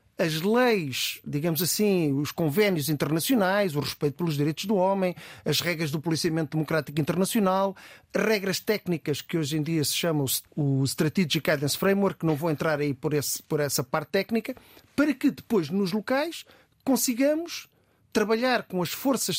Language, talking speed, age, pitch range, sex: Portuguese, 160 wpm, 50-69, 150-215 Hz, male